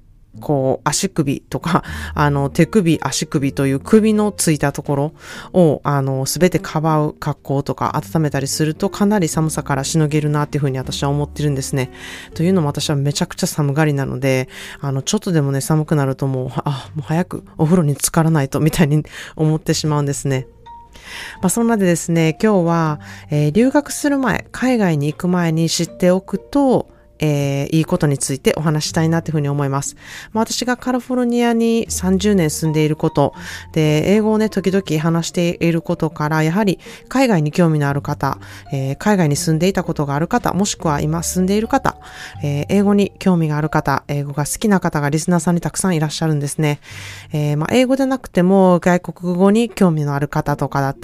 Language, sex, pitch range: Japanese, female, 145-185 Hz